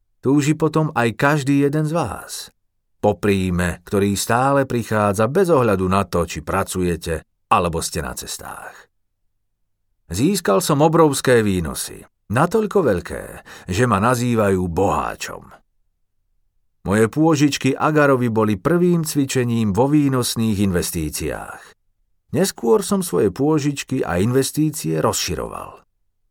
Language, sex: Slovak, male